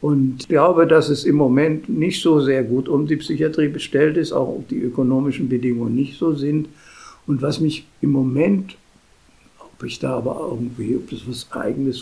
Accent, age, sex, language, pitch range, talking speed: German, 60-79, male, German, 130-155 Hz, 190 wpm